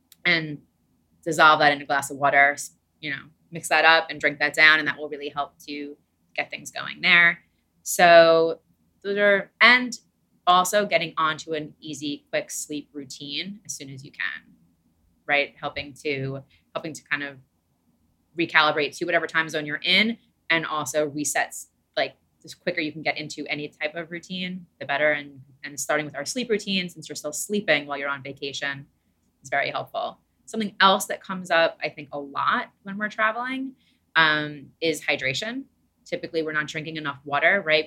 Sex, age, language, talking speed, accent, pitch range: female, 20-39, English, 180 wpm, American, 145-175 Hz